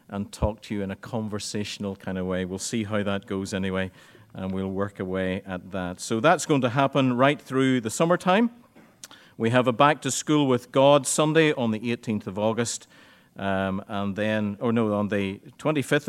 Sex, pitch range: male, 100-135 Hz